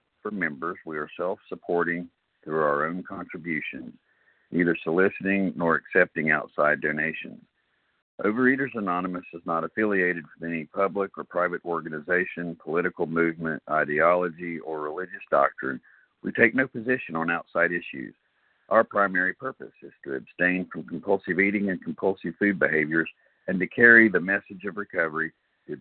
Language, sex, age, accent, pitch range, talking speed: English, male, 50-69, American, 80-100 Hz, 135 wpm